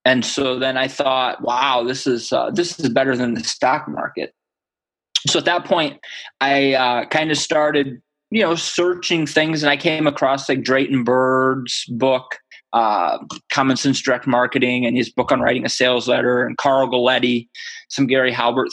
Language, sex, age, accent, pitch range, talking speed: English, male, 20-39, American, 125-145 Hz, 180 wpm